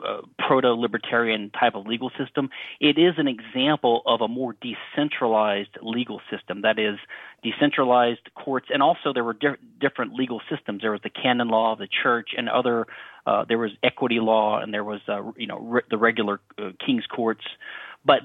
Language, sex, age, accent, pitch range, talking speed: English, male, 30-49, American, 110-145 Hz, 185 wpm